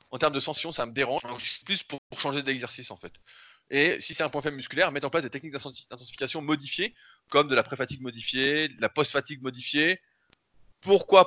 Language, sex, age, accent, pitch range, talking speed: French, male, 20-39, French, 115-145 Hz, 215 wpm